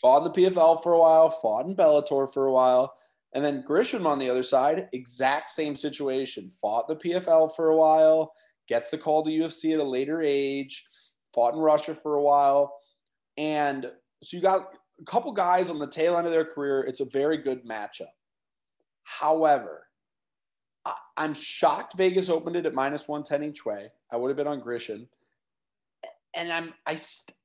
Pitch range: 135-160 Hz